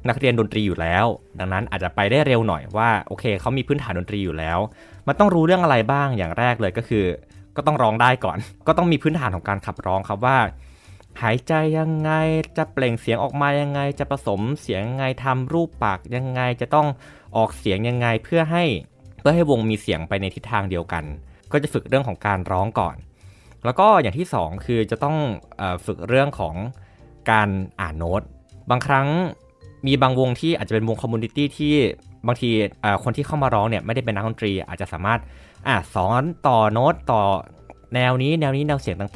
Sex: male